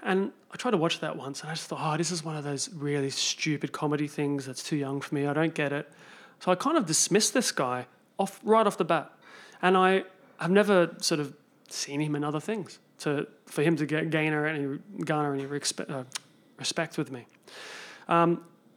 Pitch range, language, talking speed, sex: 145-185 Hz, English, 210 wpm, male